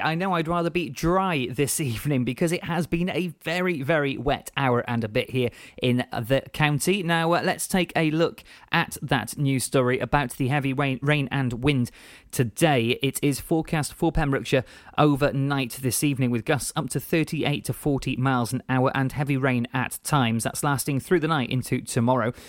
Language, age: English, 30-49